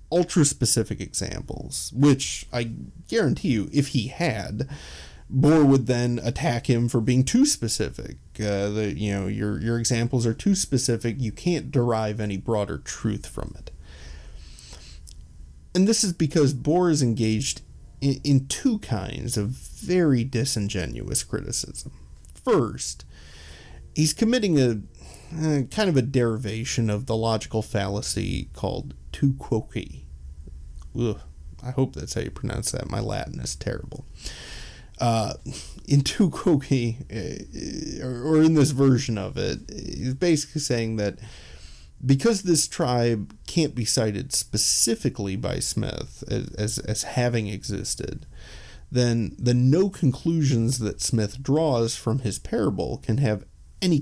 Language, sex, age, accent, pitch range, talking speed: English, male, 30-49, American, 95-135 Hz, 130 wpm